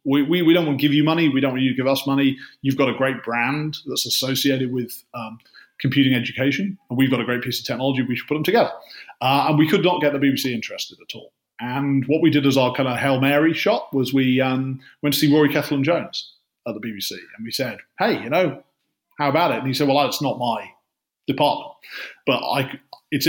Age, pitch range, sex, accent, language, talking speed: 30-49, 130-145 Hz, male, British, English, 240 wpm